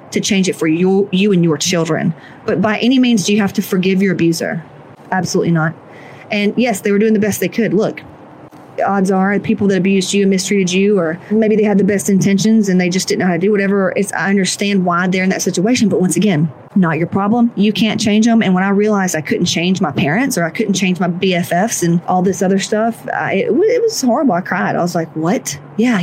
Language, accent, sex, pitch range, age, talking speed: English, American, female, 180-215 Hz, 30-49, 250 wpm